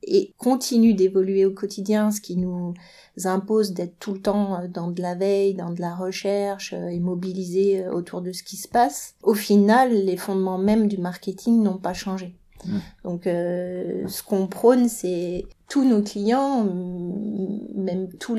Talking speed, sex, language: 165 wpm, female, French